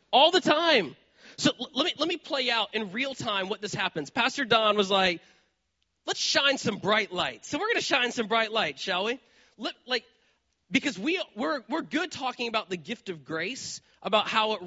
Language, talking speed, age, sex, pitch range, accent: English, 210 wpm, 30-49, male, 170-255 Hz, American